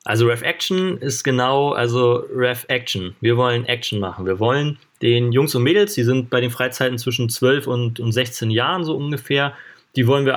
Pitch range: 115-135 Hz